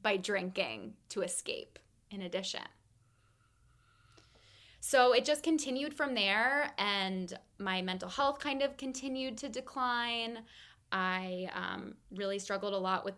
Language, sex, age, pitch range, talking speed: English, female, 20-39, 185-215 Hz, 125 wpm